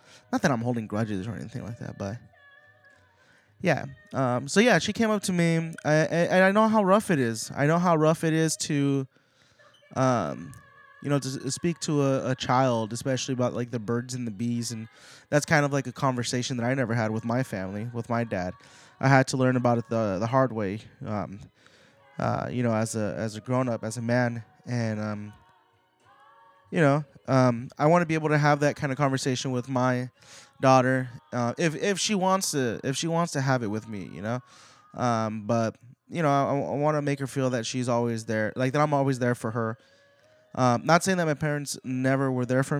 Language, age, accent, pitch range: English, 20-39, American, 120-150 Hz